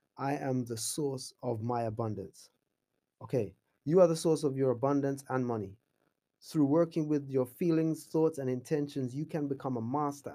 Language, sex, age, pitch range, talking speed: English, male, 20-39, 125-150 Hz, 175 wpm